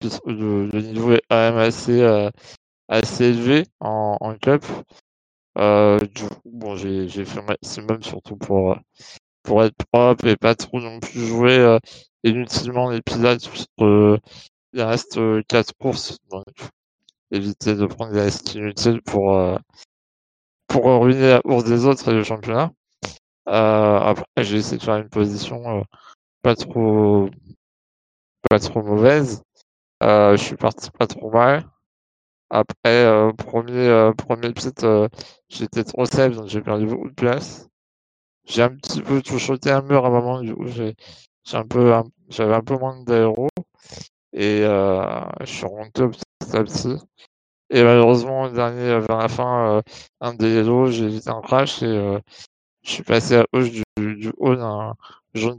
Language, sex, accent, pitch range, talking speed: French, male, French, 105-120 Hz, 165 wpm